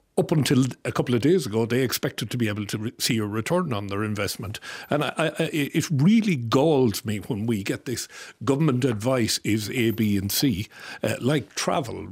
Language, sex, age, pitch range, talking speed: English, male, 60-79, 110-140 Hz, 190 wpm